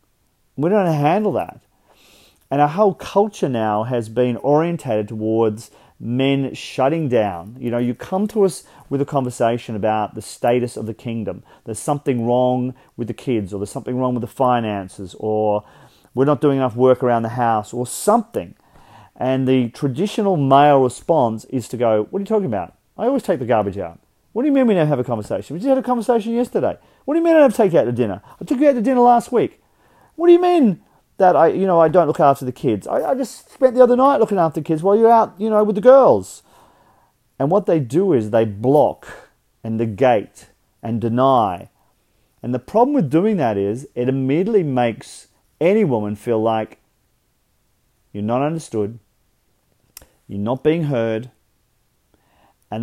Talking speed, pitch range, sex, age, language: 200 wpm, 115-185 Hz, male, 40-59, English